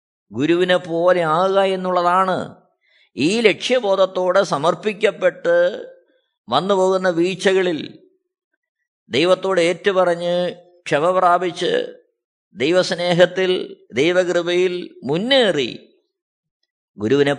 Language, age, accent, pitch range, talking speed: Malayalam, 20-39, native, 175-220 Hz, 60 wpm